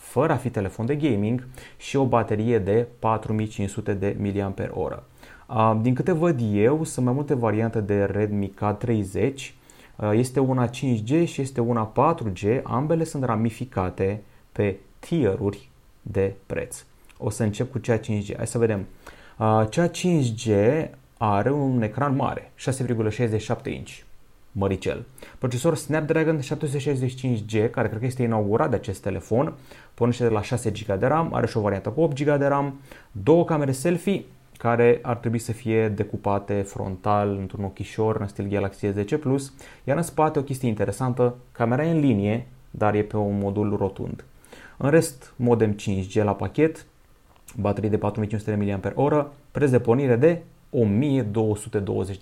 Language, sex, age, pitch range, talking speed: Romanian, male, 30-49, 105-135 Hz, 150 wpm